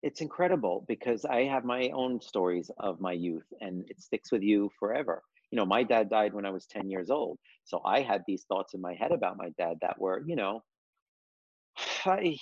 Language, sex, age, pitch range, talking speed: English, male, 40-59, 105-155 Hz, 215 wpm